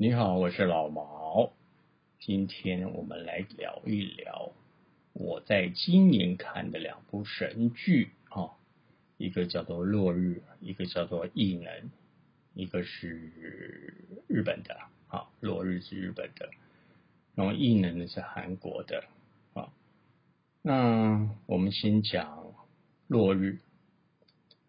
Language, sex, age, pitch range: Chinese, male, 50-69, 90-120 Hz